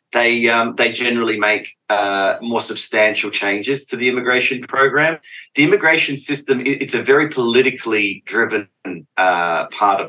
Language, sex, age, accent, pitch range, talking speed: English, male, 30-49, Australian, 100-130 Hz, 145 wpm